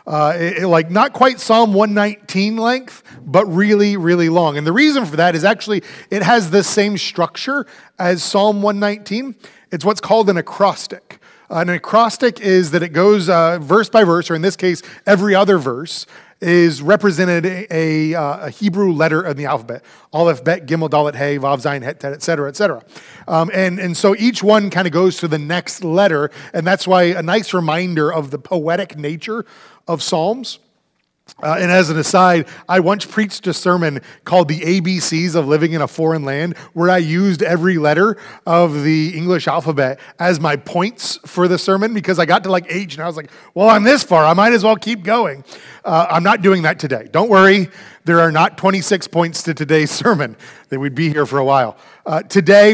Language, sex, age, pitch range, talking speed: English, male, 30-49, 160-200 Hz, 205 wpm